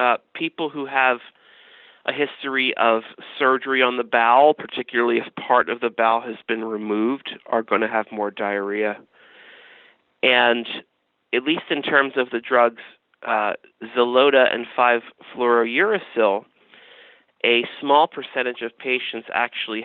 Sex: male